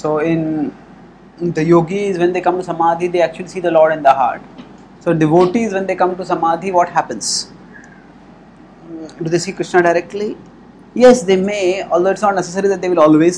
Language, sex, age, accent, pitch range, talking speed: English, male, 30-49, Indian, 165-205 Hz, 190 wpm